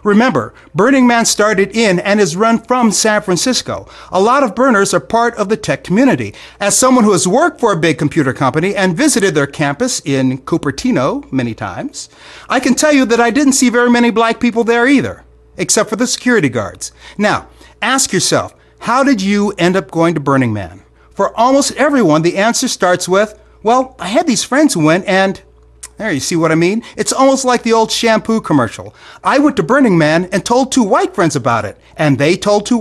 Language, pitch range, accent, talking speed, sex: English, 160-245 Hz, American, 210 wpm, male